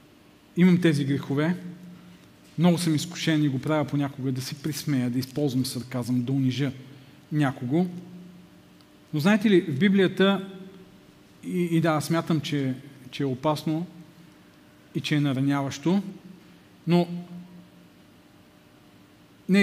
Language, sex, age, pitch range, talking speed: Bulgarian, male, 40-59, 140-180 Hz, 115 wpm